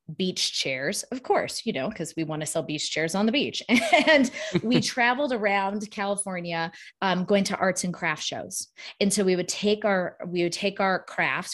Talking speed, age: 205 wpm, 20-39